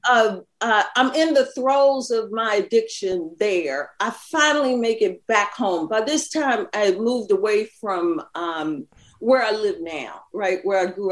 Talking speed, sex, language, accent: 175 wpm, female, English, American